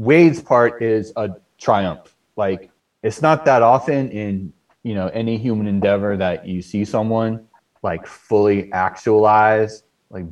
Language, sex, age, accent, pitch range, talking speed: English, male, 30-49, American, 90-115 Hz, 140 wpm